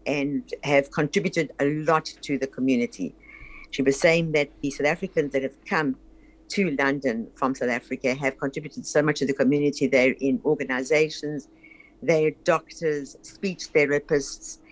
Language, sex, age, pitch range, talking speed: English, female, 60-79, 140-165 Hz, 155 wpm